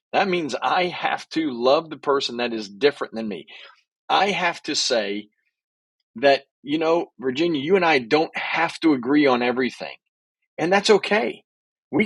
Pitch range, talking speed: 140-195 Hz, 170 wpm